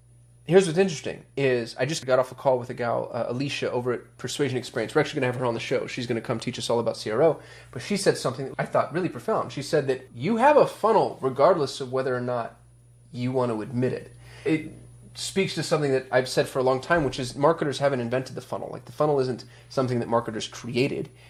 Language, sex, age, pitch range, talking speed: English, male, 30-49, 120-145 Hz, 250 wpm